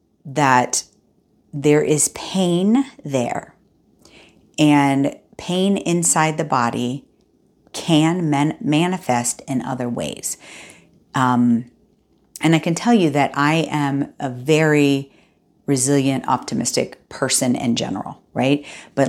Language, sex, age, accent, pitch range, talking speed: English, female, 40-59, American, 130-150 Hz, 105 wpm